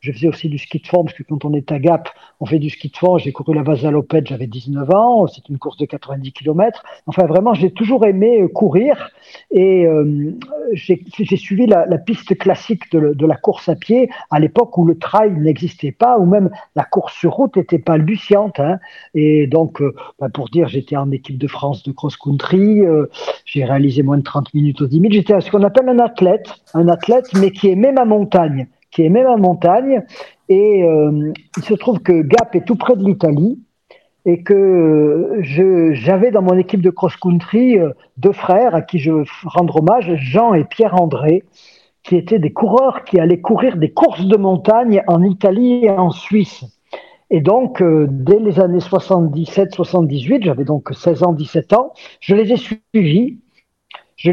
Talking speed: 200 wpm